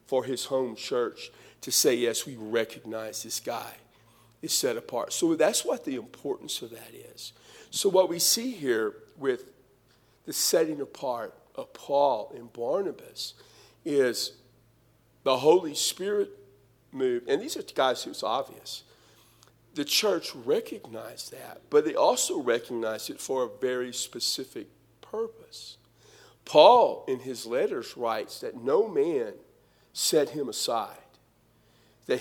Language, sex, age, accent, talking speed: English, male, 50-69, American, 135 wpm